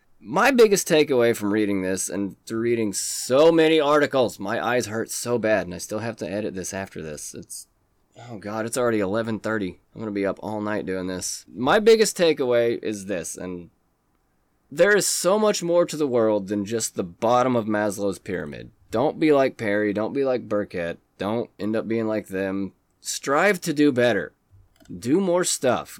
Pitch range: 95-125 Hz